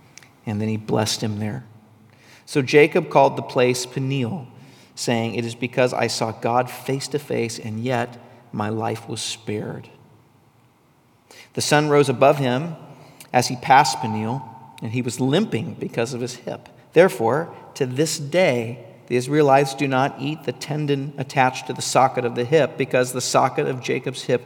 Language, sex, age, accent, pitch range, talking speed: English, male, 50-69, American, 120-150 Hz, 170 wpm